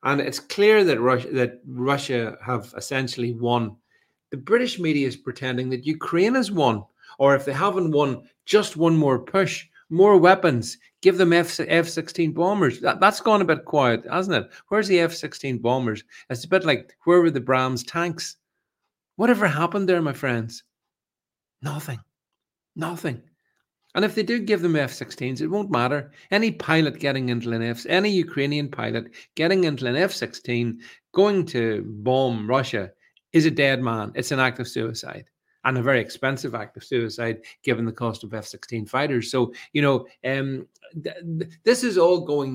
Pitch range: 125-170 Hz